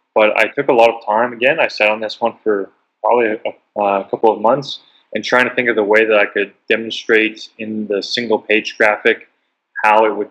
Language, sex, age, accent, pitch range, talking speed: English, male, 20-39, American, 105-120 Hz, 220 wpm